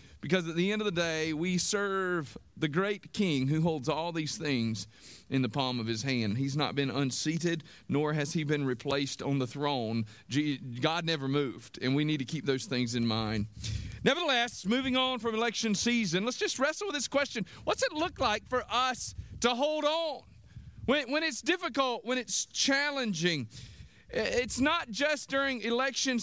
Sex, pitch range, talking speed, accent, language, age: male, 170-265 Hz, 185 wpm, American, English, 40-59